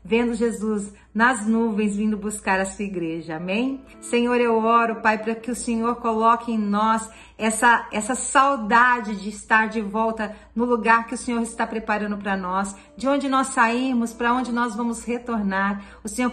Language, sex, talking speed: Portuguese, female, 175 wpm